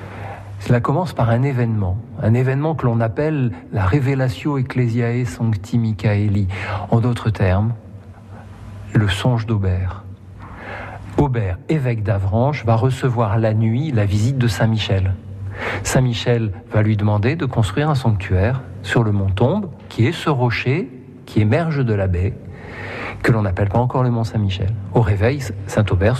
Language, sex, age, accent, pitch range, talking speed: French, male, 50-69, French, 100-120 Hz, 145 wpm